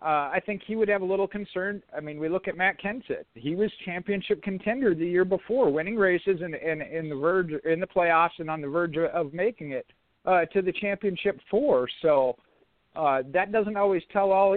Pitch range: 150-190 Hz